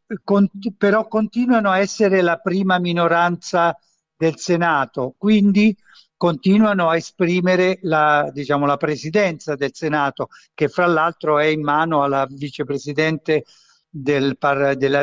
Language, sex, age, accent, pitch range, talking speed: Italian, male, 50-69, native, 155-200 Hz, 120 wpm